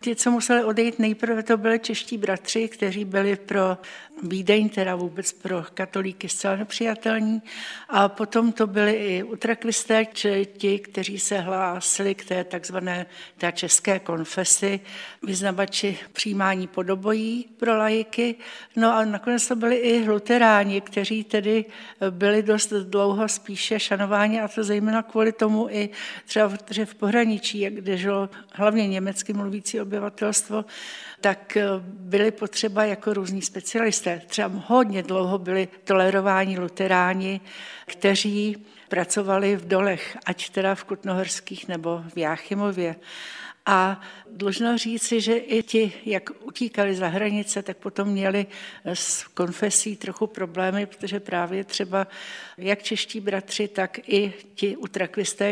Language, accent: Czech, native